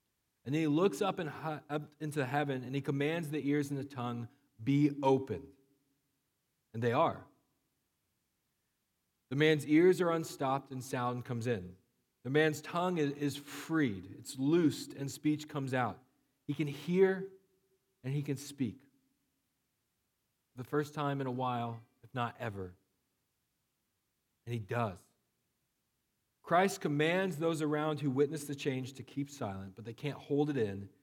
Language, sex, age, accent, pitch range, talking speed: English, male, 40-59, American, 125-155 Hz, 150 wpm